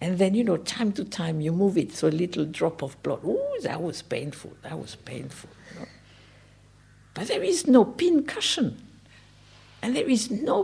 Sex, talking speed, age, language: female, 195 wpm, 60-79, English